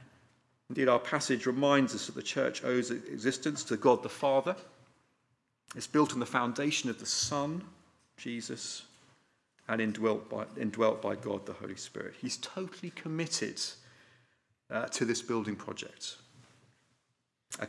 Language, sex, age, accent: English, male, 40-59, British